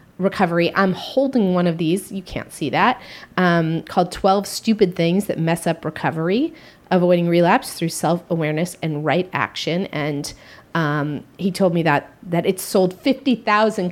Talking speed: 155 wpm